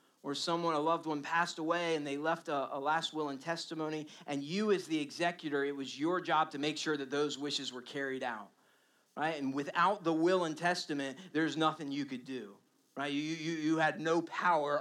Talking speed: 215 wpm